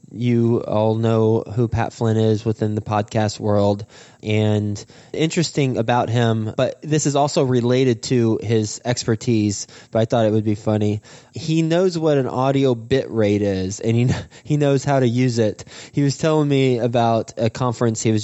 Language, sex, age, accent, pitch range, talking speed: English, male, 20-39, American, 105-130 Hz, 180 wpm